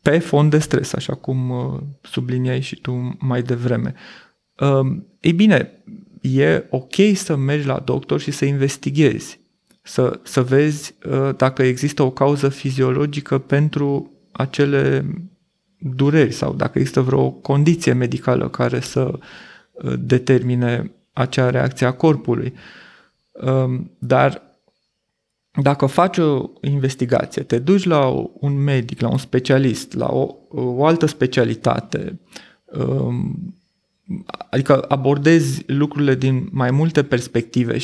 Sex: male